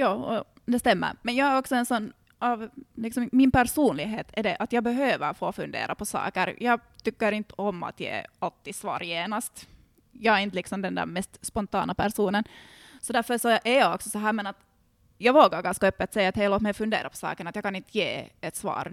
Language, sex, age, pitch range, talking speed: Swedish, female, 20-39, 190-225 Hz, 220 wpm